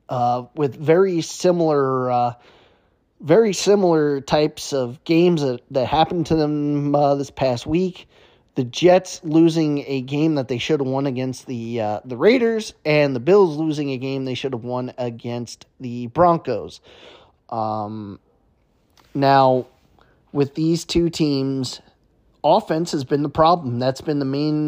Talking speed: 150 wpm